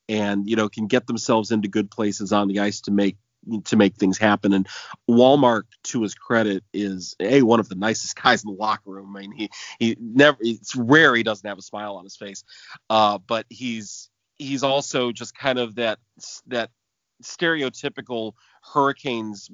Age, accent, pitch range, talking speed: 30-49, American, 105-120 Hz, 185 wpm